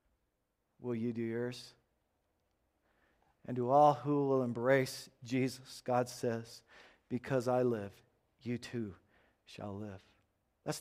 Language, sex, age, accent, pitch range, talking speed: English, male, 50-69, American, 120-155 Hz, 115 wpm